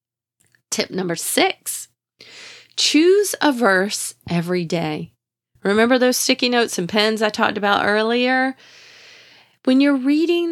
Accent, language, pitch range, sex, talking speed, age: American, English, 180-275 Hz, female, 120 wpm, 30-49